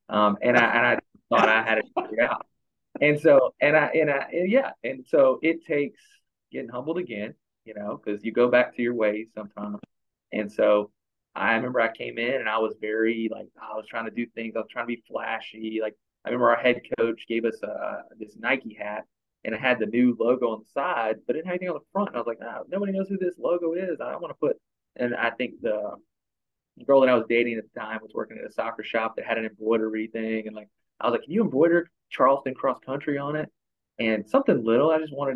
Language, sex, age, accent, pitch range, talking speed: English, male, 20-39, American, 110-125 Hz, 255 wpm